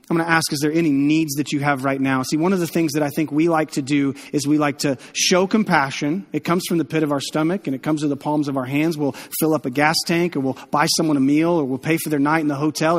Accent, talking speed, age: American, 320 wpm, 30-49